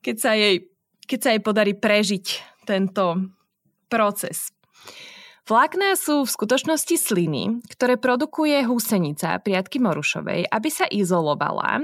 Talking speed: 115 wpm